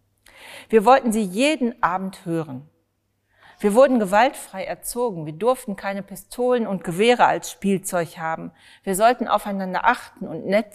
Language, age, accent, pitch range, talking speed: German, 40-59, German, 160-220 Hz, 140 wpm